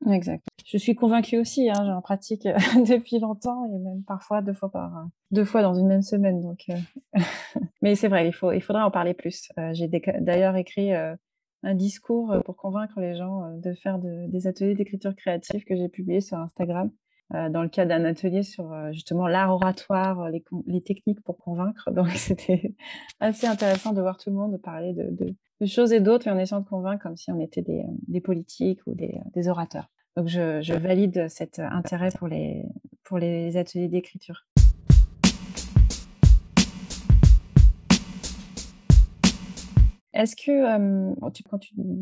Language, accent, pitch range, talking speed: French, French, 175-210 Hz, 175 wpm